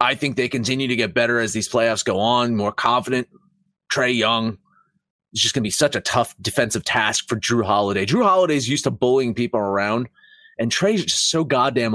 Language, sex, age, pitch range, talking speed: English, male, 30-49, 125-190 Hz, 210 wpm